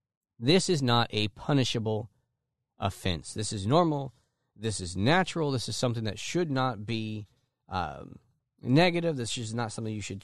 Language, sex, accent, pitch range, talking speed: English, male, American, 105-135 Hz, 160 wpm